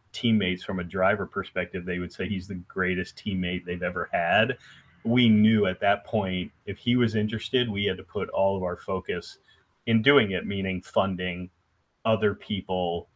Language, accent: English, American